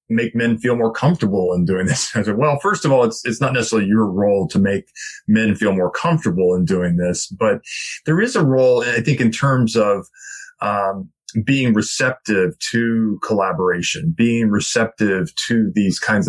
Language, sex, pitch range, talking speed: English, male, 100-120 Hz, 180 wpm